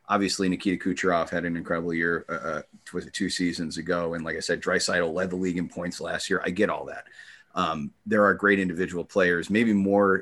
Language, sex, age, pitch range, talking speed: English, male, 30-49, 85-100 Hz, 215 wpm